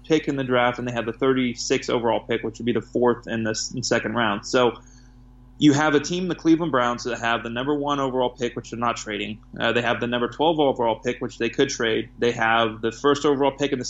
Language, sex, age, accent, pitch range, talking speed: English, male, 20-39, American, 120-140 Hz, 255 wpm